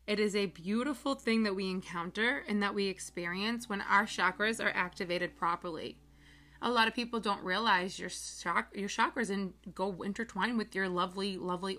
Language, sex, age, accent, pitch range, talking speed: English, female, 20-39, American, 180-220 Hz, 185 wpm